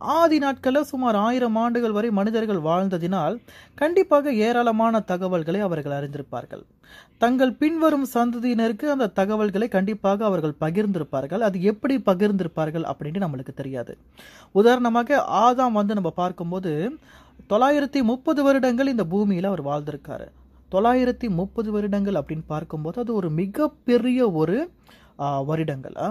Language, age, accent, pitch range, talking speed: Tamil, 30-49, native, 170-245 Hz, 110 wpm